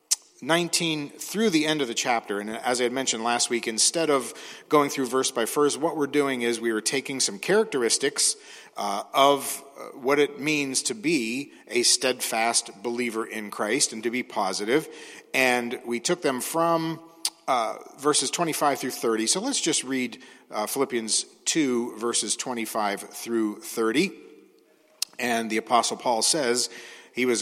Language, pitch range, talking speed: English, 115-145 Hz, 160 wpm